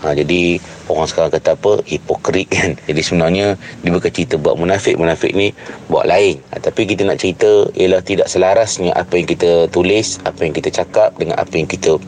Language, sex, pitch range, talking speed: Malay, male, 85-110 Hz, 185 wpm